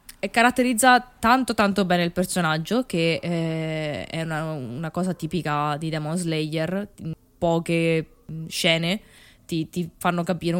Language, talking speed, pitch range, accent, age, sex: Italian, 125 wpm, 155-185 Hz, native, 20-39, female